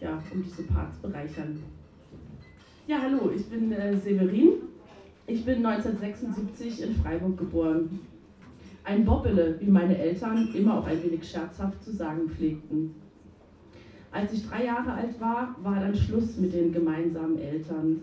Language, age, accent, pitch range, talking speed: German, 30-49, German, 165-225 Hz, 145 wpm